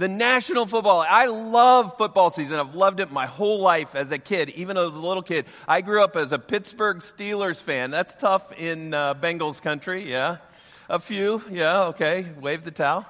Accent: American